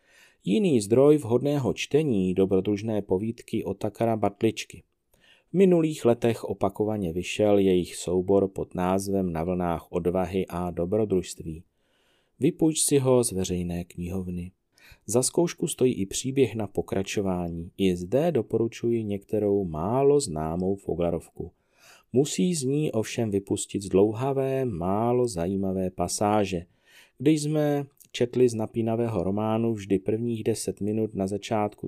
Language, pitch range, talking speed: Czech, 90-125 Hz, 120 wpm